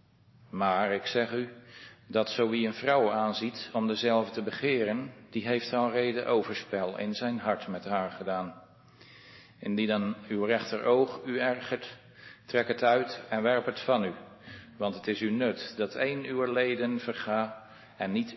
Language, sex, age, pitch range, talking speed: Dutch, male, 50-69, 105-125 Hz, 170 wpm